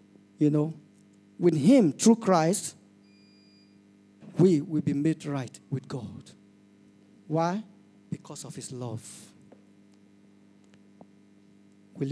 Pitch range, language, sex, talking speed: 100-160 Hz, English, male, 95 wpm